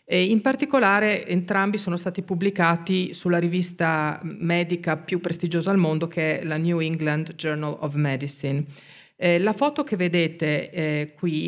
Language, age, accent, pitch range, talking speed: Italian, 40-59, native, 155-195 Hz, 135 wpm